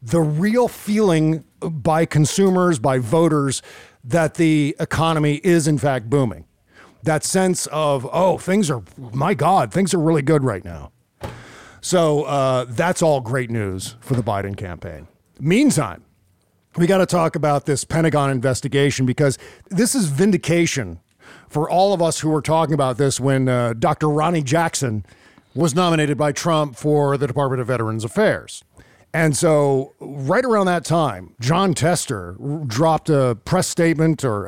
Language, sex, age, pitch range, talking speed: English, male, 50-69, 130-165 Hz, 150 wpm